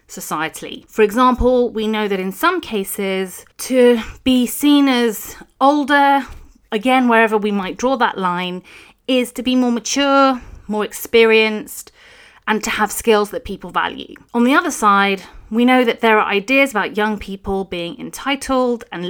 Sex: female